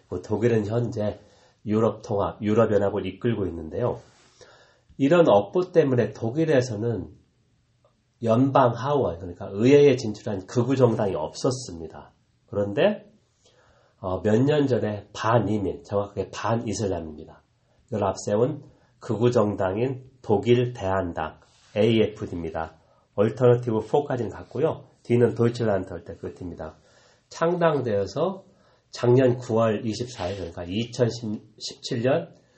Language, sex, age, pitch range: Korean, male, 40-59, 100-125 Hz